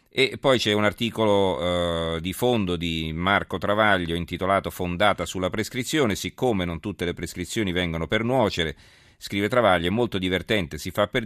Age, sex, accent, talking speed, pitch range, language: 40-59, male, native, 165 wpm, 85-105 Hz, Italian